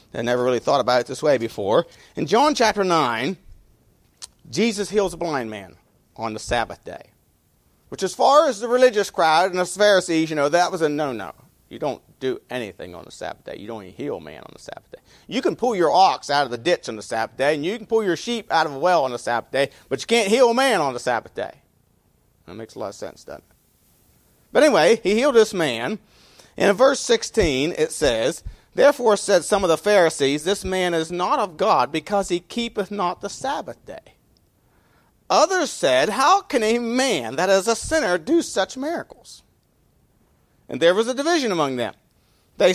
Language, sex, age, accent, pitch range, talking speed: English, male, 40-59, American, 140-235 Hz, 215 wpm